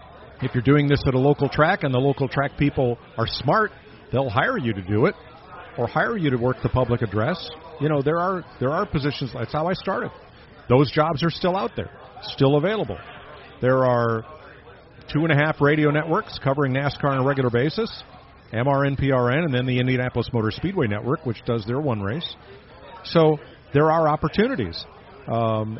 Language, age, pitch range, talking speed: English, 50-69, 120-155 Hz, 180 wpm